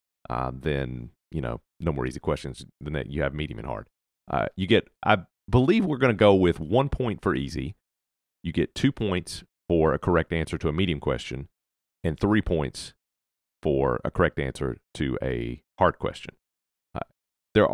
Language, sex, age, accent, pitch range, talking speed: English, male, 40-59, American, 70-105 Hz, 185 wpm